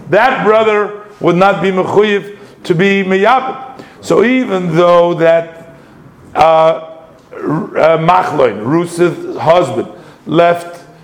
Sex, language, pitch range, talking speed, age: male, English, 175-205 Hz, 105 wpm, 50-69